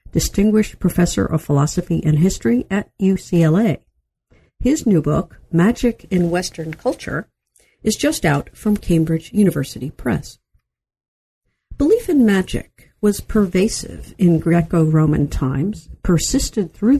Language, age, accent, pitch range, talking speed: English, 60-79, American, 160-215 Hz, 115 wpm